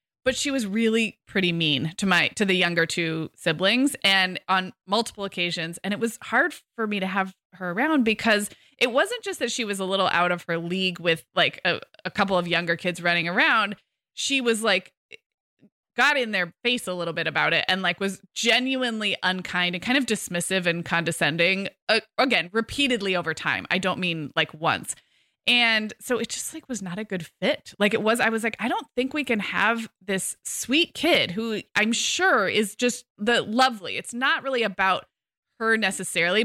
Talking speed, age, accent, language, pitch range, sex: 200 wpm, 20-39, American, English, 180-250 Hz, female